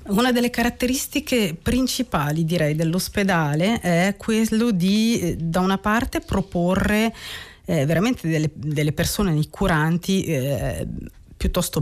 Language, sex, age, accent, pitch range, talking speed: Italian, female, 40-59, native, 155-195 Hz, 105 wpm